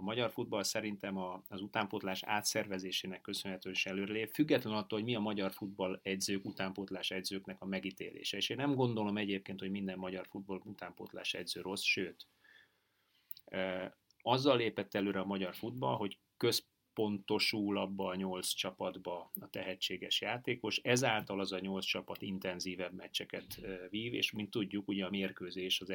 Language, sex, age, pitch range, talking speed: Hungarian, male, 30-49, 95-105 Hz, 150 wpm